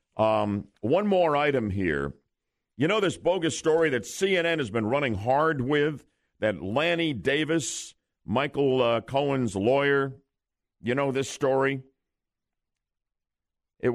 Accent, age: American, 50-69